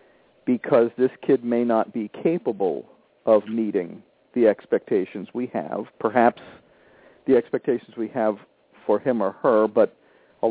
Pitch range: 110-135 Hz